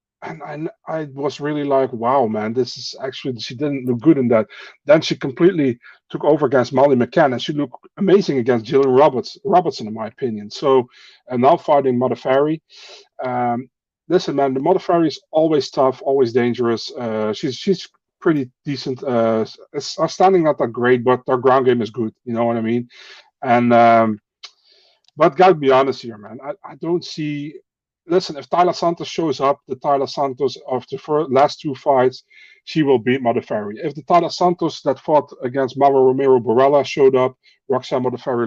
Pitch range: 120-155 Hz